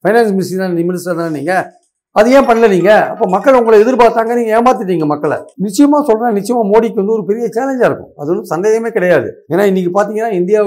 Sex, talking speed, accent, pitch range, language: male, 185 wpm, native, 180-215 Hz, Tamil